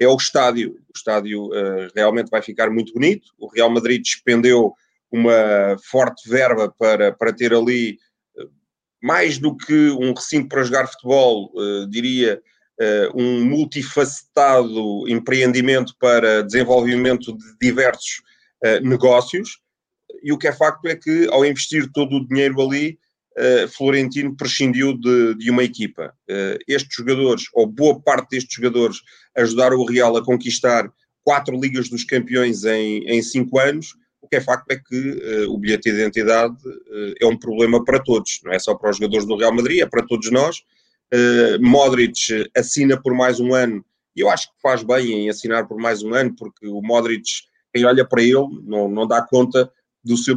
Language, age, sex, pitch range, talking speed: Portuguese, 30-49, male, 115-135 Hz, 175 wpm